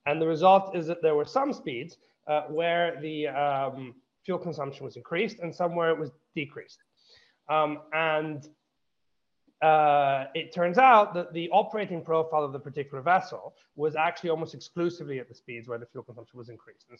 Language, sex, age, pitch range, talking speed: English, male, 30-49, 135-170 Hz, 180 wpm